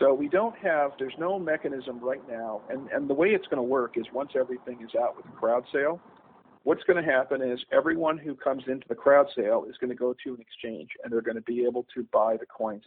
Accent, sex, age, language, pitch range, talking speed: American, male, 50-69, English, 120-145 Hz, 255 wpm